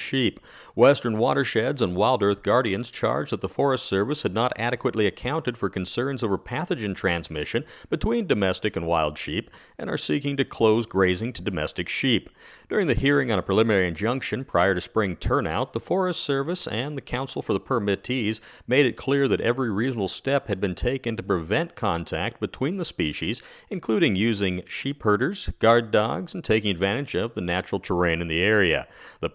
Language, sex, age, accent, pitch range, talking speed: English, male, 40-59, American, 95-125 Hz, 180 wpm